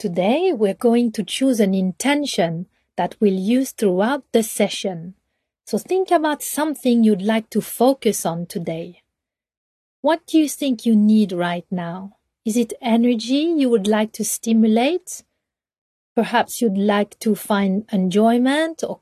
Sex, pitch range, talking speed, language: female, 195-255 Hz, 145 wpm, English